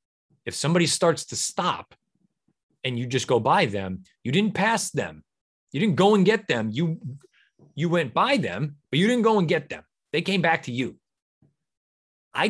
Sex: male